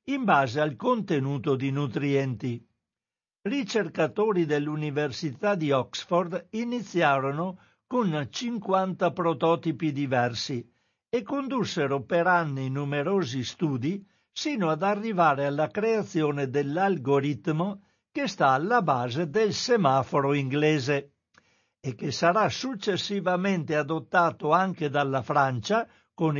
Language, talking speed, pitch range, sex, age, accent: Italian, 100 wpm, 140-185 Hz, male, 60-79, native